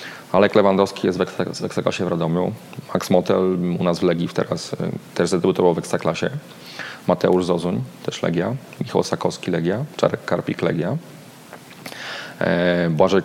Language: Polish